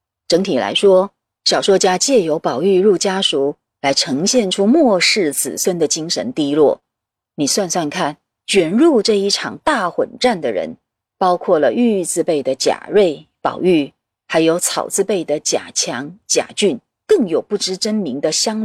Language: Chinese